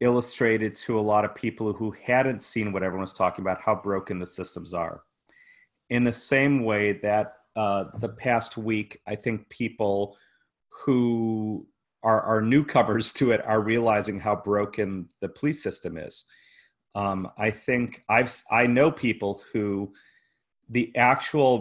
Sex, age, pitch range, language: male, 30-49, 105-125 Hz, English